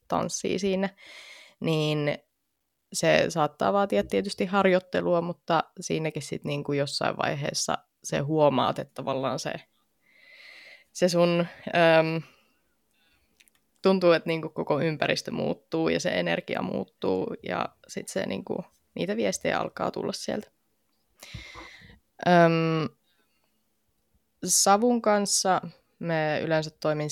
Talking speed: 105 wpm